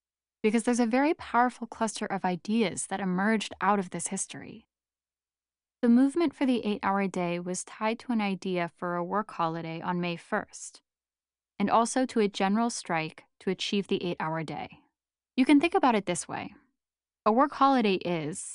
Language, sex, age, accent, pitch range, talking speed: English, female, 10-29, American, 170-220 Hz, 175 wpm